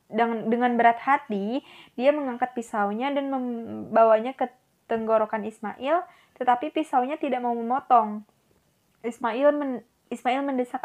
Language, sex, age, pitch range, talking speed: Indonesian, female, 20-39, 220-275 Hz, 115 wpm